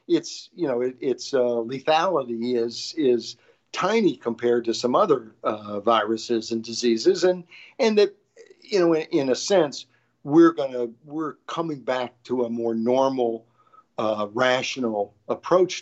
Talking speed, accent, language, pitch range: 150 wpm, American, English, 120-160 Hz